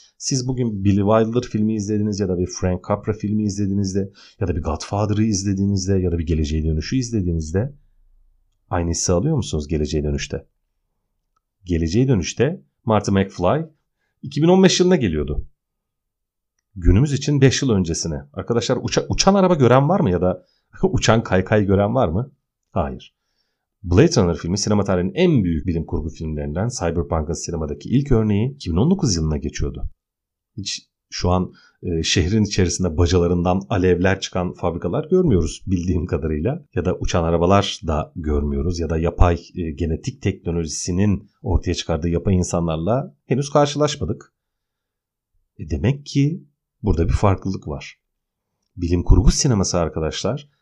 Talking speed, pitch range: 135 wpm, 85-120 Hz